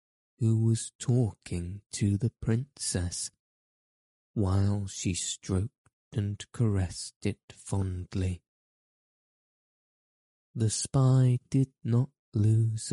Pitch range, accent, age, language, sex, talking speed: 95-115 Hz, British, 20-39, English, male, 85 wpm